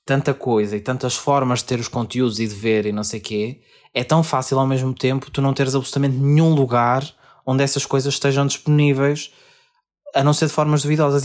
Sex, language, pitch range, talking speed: male, Portuguese, 130-160 Hz, 215 wpm